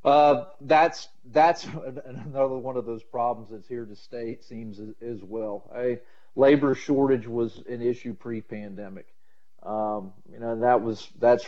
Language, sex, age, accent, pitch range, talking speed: English, male, 40-59, American, 105-120 Hz, 155 wpm